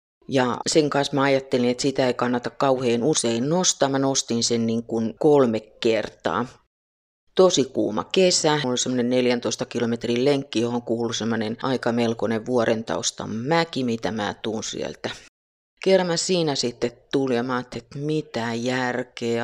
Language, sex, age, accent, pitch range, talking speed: Finnish, female, 30-49, native, 115-140 Hz, 150 wpm